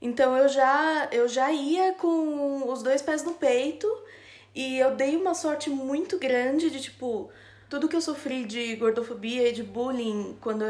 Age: 20-39